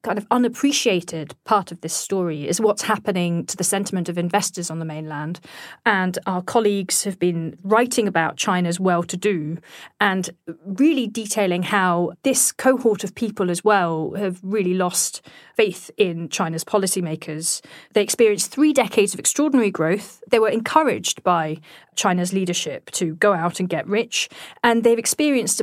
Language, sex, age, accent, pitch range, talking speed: English, female, 40-59, British, 175-225 Hz, 155 wpm